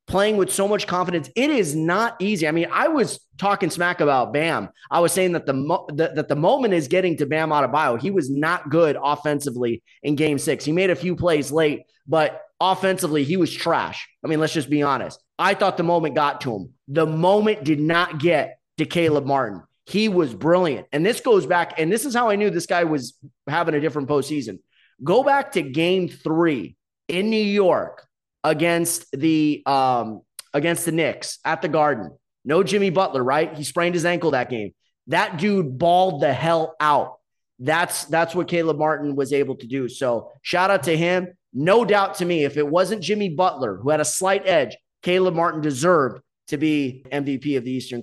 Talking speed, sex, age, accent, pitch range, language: 205 wpm, male, 30-49, American, 145-180 Hz, English